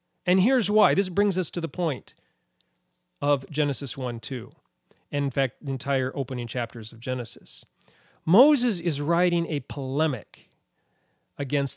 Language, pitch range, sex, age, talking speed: English, 140-190 Hz, male, 40-59, 140 wpm